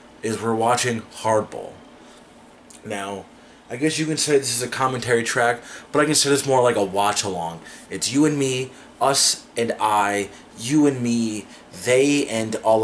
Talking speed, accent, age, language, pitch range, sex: 180 wpm, American, 20-39, English, 105-135 Hz, male